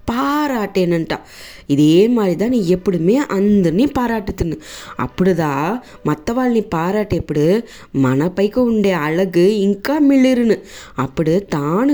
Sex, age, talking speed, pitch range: female, 20-39, 80 wpm, 165-235 Hz